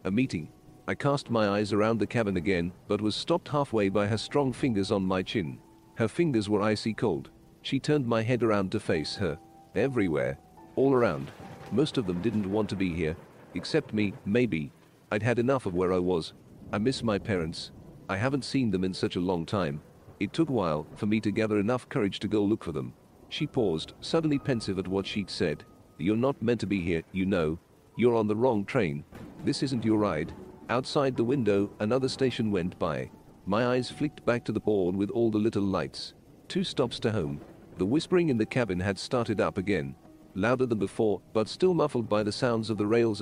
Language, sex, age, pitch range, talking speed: English, male, 40-59, 100-130 Hz, 210 wpm